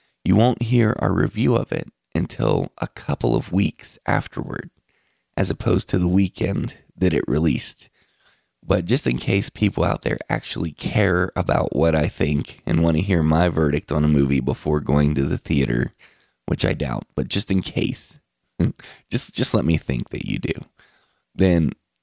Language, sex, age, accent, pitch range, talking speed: English, male, 20-39, American, 70-95 Hz, 175 wpm